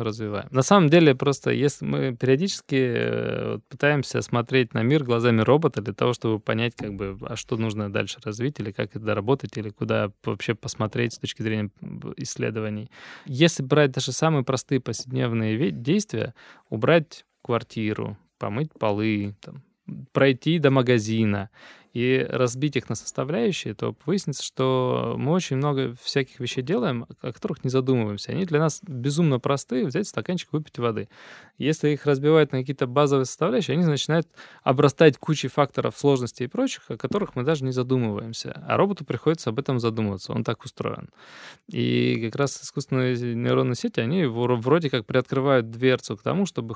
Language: Russian